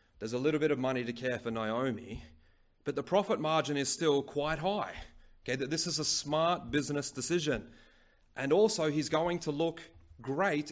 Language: English